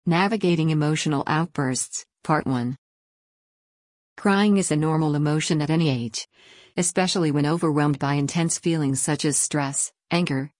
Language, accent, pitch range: English, American, 140-165 Hz